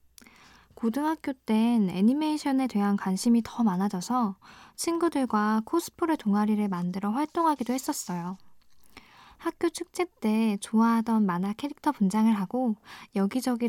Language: Korean